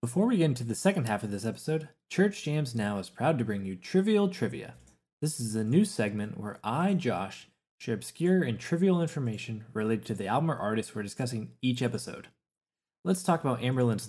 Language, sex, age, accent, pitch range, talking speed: English, male, 20-39, American, 115-155 Hz, 200 wpm